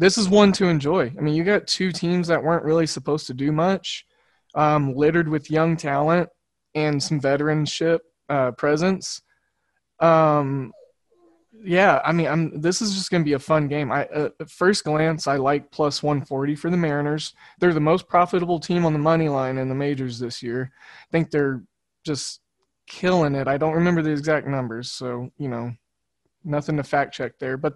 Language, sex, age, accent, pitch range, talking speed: English, male, 20-39, American, 140-165 Hz, 185 wpm